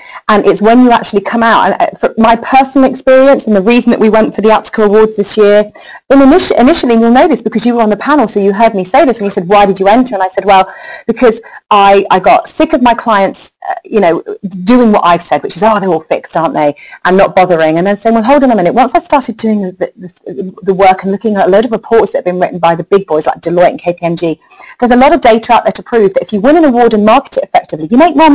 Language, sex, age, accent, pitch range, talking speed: English, female, 30-49, British, 185-250 Hz, 290 wpm